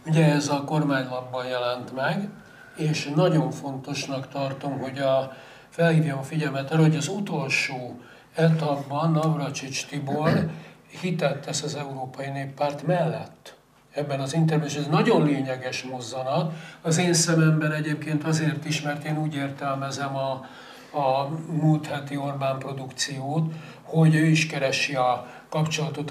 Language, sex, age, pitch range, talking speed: Hungarian, male, 60-79, 135-155 Hz, 130 wpm